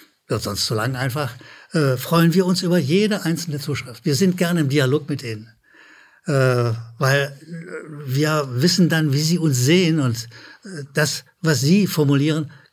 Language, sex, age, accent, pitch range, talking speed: German, male, 60-79, German, 130-170 Hz, 165 wpm